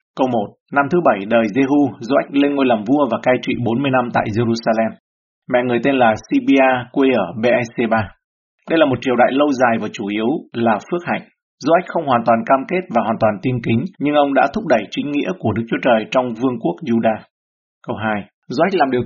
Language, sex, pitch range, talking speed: Vietnamese, male, 115-140 Hz, 225 wpm